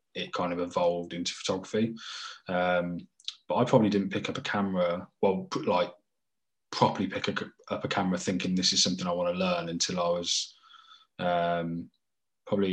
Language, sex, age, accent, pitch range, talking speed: English, male, 20-39, British, 90-105 Hz, 165 wpm